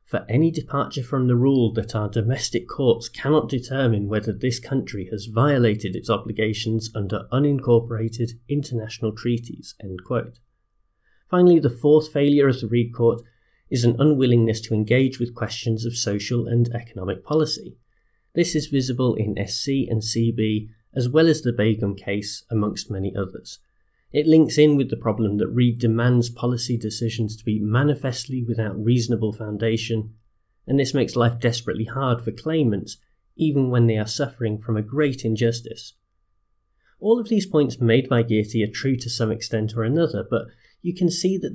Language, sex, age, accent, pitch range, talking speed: English, male, 30-49, British, 110-135 Hz, 165 wpm